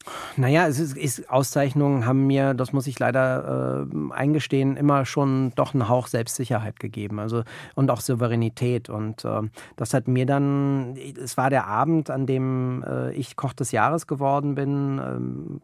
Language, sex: German, male